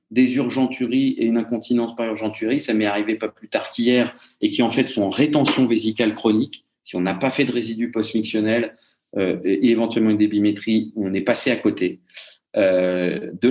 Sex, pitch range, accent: male, 105-135 Hz, French